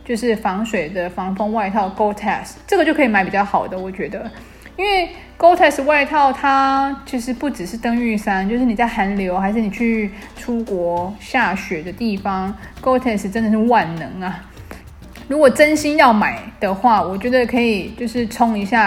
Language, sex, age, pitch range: Chinese, female, 20-39, 195-250 Hz